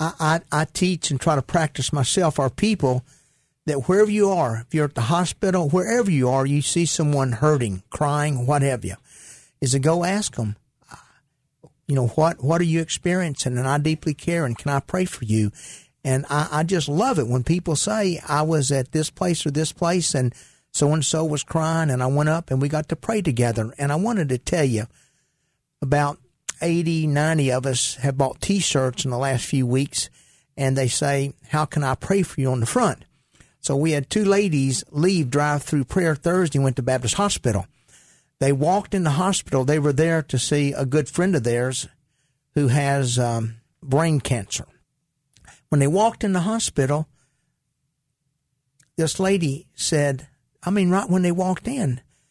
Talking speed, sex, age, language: 190 wpm, male, 50-69, English